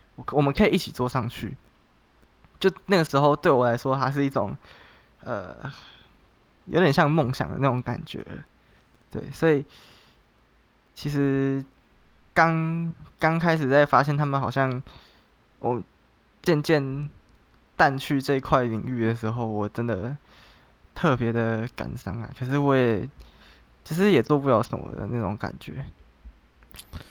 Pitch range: 115-150 Hz